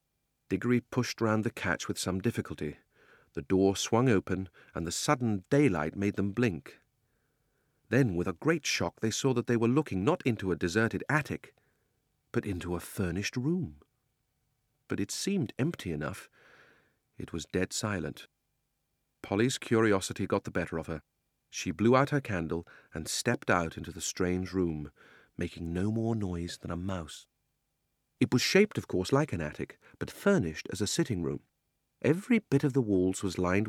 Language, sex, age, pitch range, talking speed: English, male, 40-59, 90-125 Hz, 170 wpm